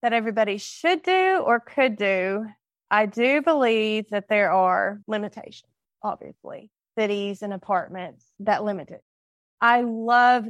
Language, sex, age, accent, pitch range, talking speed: English, female, 30-49, American, 200-250 Hz, 130 wpm